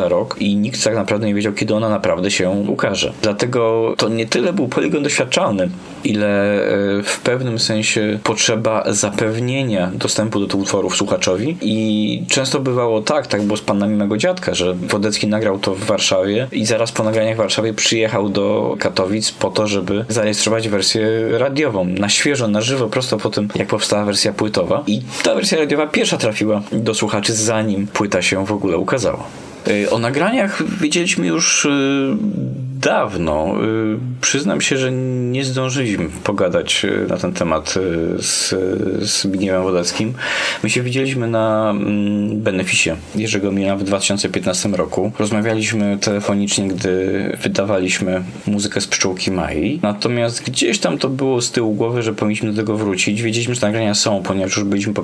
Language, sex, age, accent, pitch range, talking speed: Polish, male, 20-39, native, 100-115 Hz, 155 wpm